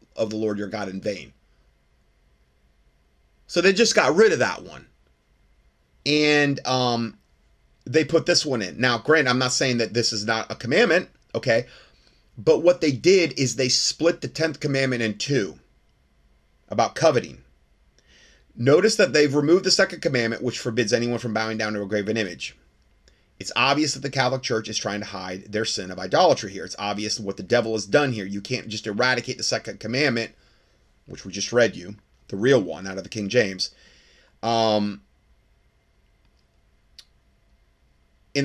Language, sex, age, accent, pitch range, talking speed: English, male, 30-49, American, 90-135 Hz, 170 wpm